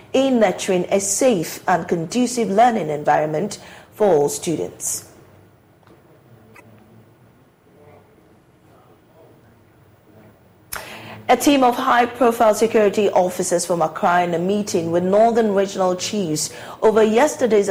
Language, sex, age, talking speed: English, female, 40-59, 95 wpm